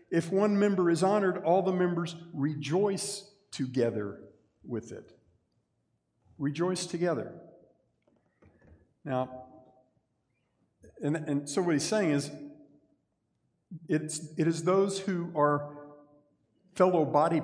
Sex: male